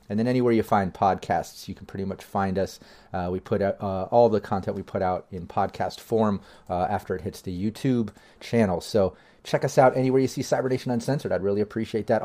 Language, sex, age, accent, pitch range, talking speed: English, male, 30-49, American, 100-120 Hz, 225 wpm